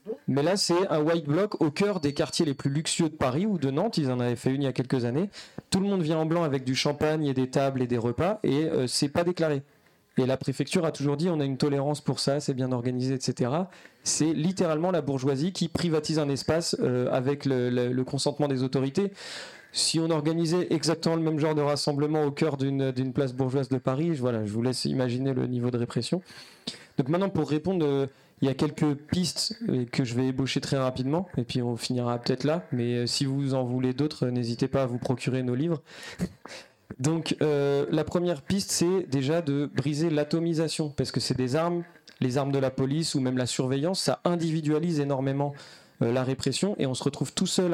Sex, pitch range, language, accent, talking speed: male, 130-160 Hz, French, French, 220 wpm